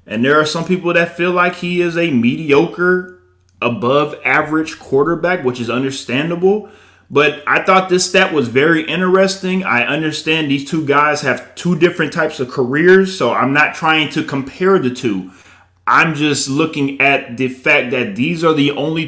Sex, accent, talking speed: male, American, 175 wpm